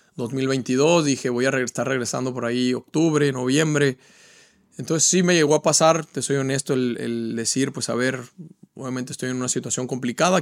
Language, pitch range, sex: Spanish, 130-155 Hz, male